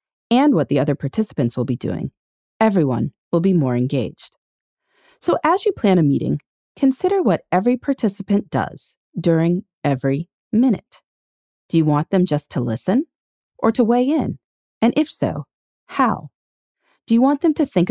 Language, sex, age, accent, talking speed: English, female, 30-49, American, 160 wpm